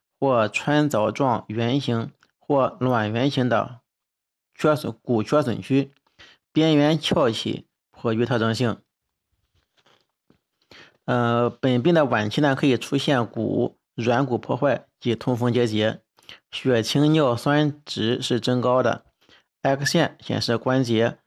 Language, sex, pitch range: Chinese, male, 115-145 Hz